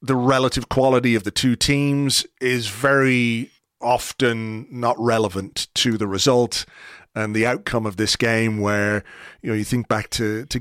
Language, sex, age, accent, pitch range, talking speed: English, male, 30-49, British, 115-135 Hz, 165 wpm